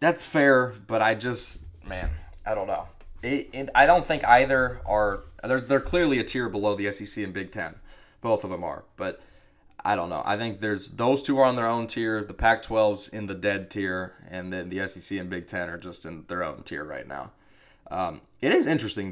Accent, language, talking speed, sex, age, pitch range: American, English, 220 wpm, male, 20-39, 95-105 Hz